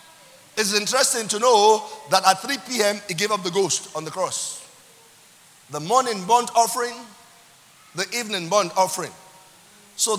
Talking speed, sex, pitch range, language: 145 wpm, male, 165-230 Hz, English